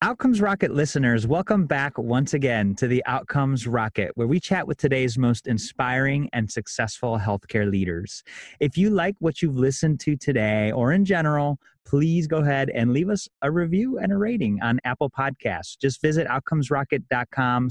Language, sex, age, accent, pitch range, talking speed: English, male, 30-49, American, 115-155 Hz, 170 wpm